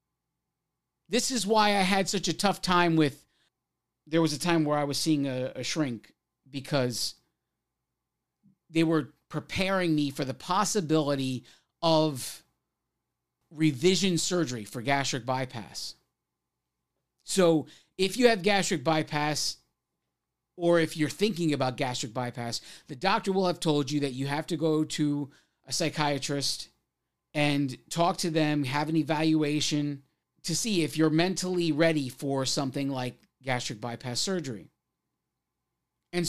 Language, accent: English, American